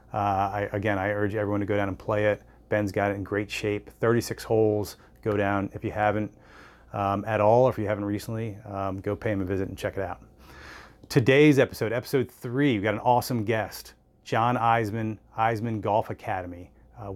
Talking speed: 205 wpm